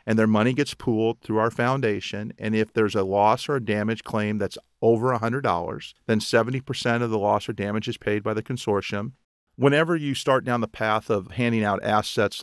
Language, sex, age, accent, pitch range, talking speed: English, male, 40-59, American, 105-125 Hz, 205 wpm